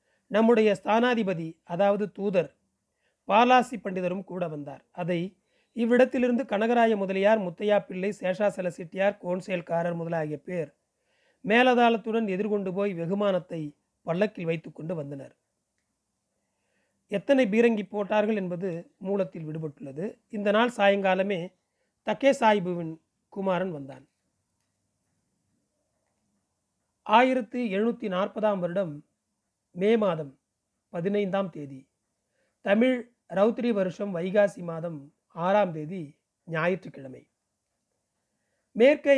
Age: 40-59